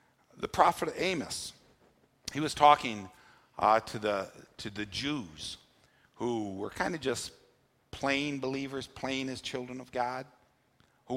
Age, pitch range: 60-79, 110-145 Hz